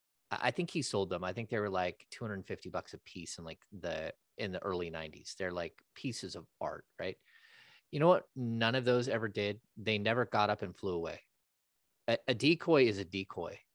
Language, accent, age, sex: English, American, 30-49, male